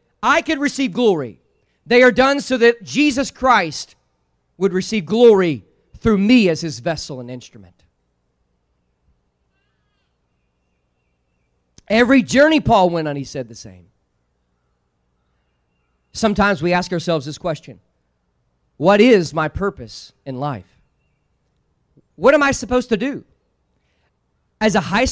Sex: male